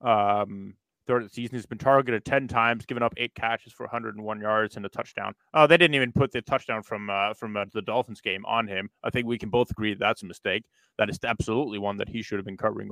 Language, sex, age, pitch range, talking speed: English, male, 20-39, 110-150 Hz, 245 wpm